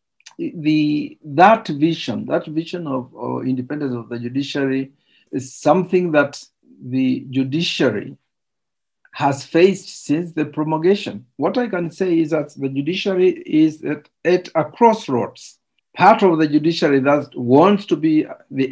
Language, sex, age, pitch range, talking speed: English, male, 50-69, 130-165 Hz, 140 wpm